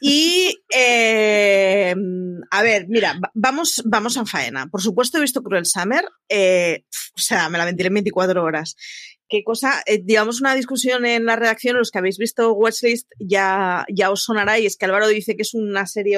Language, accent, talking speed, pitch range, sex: Spanish, Spanish, 185 wpm, 195-265 Hz, female